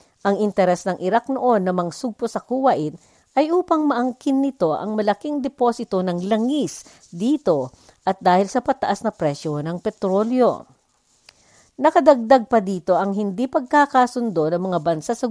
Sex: female